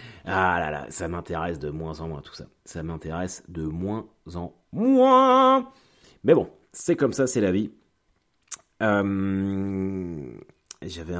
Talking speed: 145 wpm